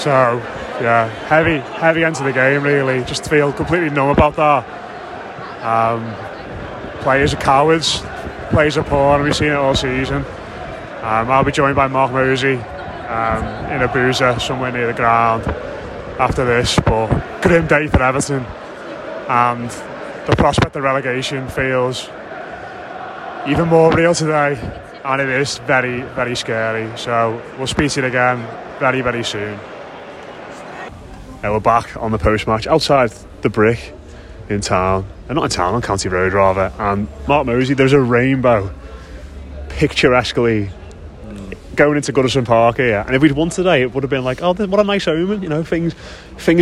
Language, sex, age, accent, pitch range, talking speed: English, male, 20-39, British, 110-140 Hz, 160 wpm